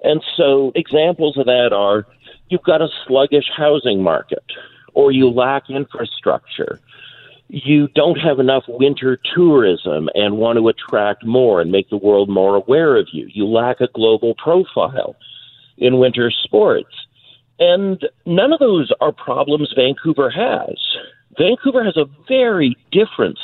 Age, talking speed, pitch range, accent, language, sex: 50-69, 145 wpm, 115-175 Hz, American, English, male